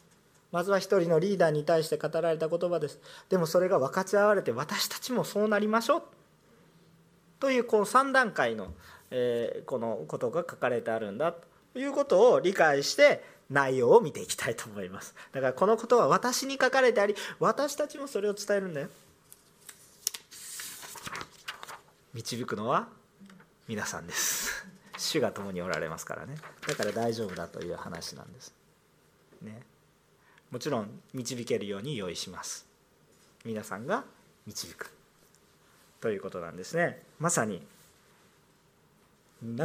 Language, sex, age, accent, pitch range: Japanese, male, 40-59, native, 150-235 Hz